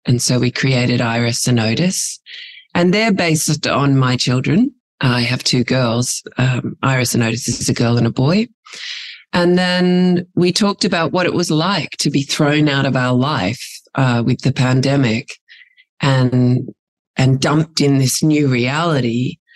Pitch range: 130-175 Hz